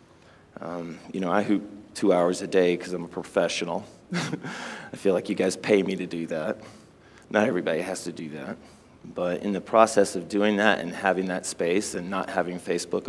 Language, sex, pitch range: English, male, 90-110 Hz